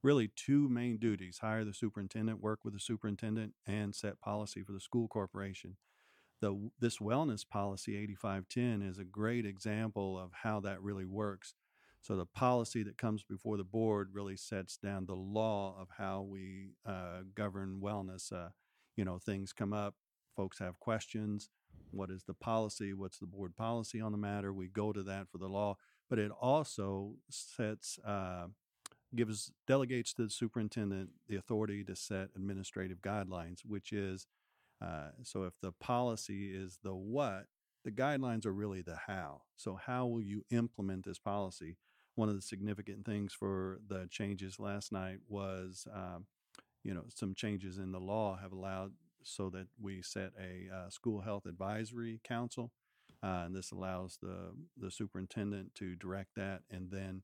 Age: 50-69